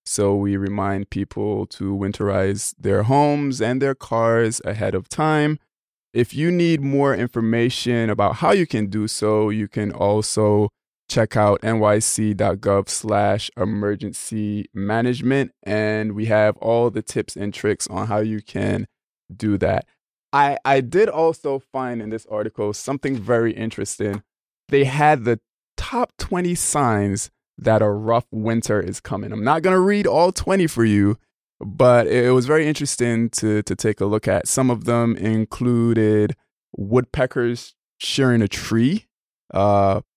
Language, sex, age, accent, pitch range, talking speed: English, male, 20-39, American, 105-125 Hz, 150 wpm